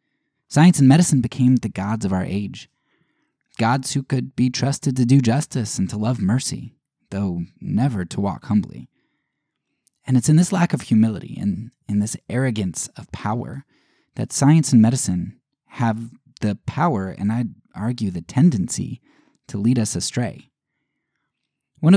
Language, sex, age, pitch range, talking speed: English, male, 20-39, 110-140 Hz, 155 wpm